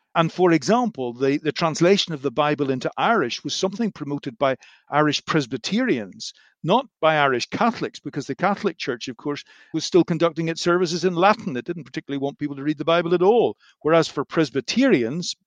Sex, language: male, English